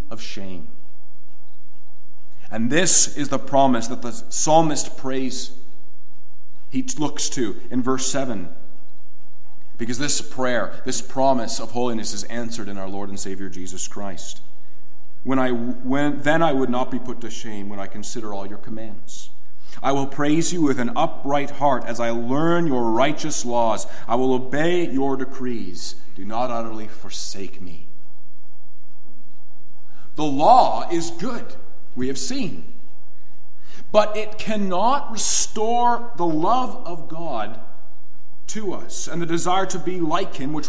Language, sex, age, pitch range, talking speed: English, male, 40-59, 120-180 Hz, 145 wpm